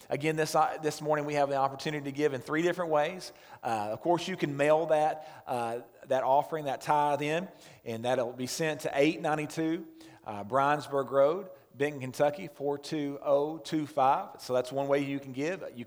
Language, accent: English, American